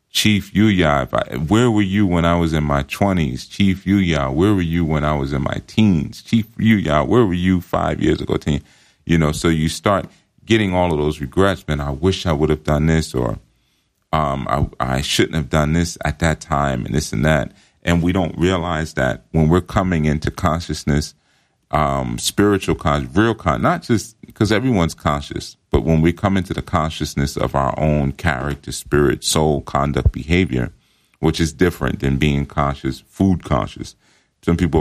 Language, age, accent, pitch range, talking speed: English, 40-59, American, 70-90 Hz, 190 wpm